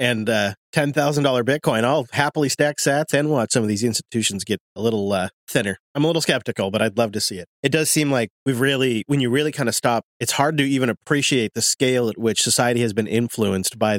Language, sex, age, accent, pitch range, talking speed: English, male, 30-49, American, 115-145 Hz, 235 wpm